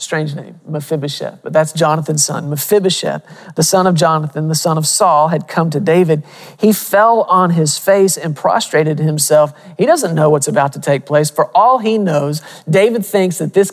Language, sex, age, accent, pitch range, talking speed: English, male, 40-59, American, 150-175 Hz, 190 wpm